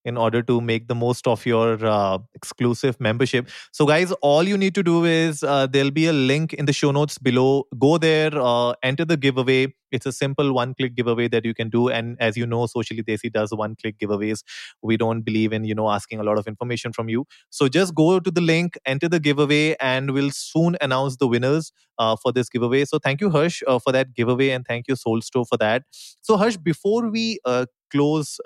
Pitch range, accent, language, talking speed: 115-150 Hz, Indian, English, 220 wpm